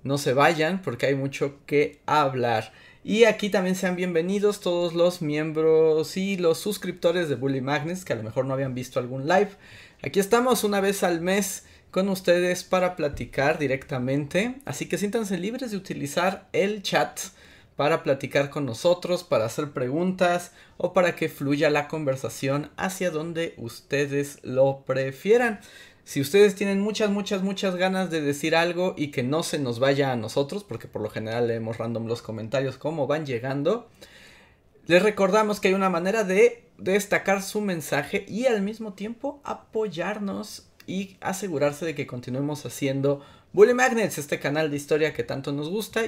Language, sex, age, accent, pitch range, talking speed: Spanish, male, 30-49, Mexican, 140-195 Hz, 165 wpm